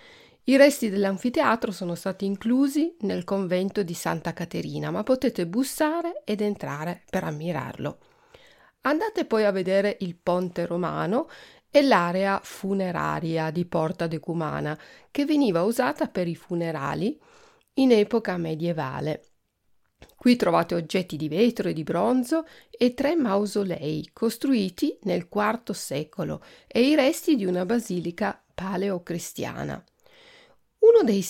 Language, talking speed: Italian, 125 wpm